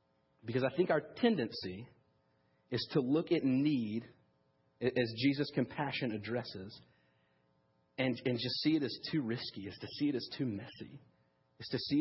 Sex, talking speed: male, 160 wpm